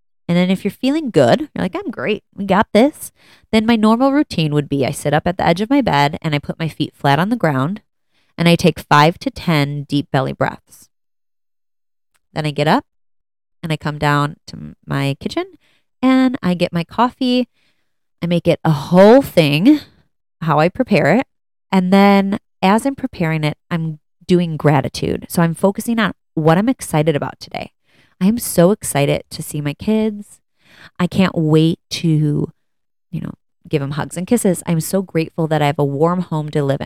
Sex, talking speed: female, 195 wpm